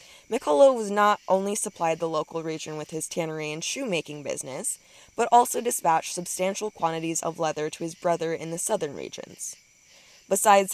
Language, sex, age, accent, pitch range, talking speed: English, female, 20-39, American, 165-195 Hz, 160 wpm